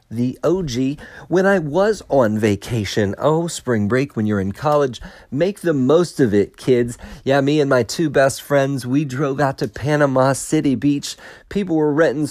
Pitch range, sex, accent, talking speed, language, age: 115-150 Hz, male, American, 180 wpm, English, 40-59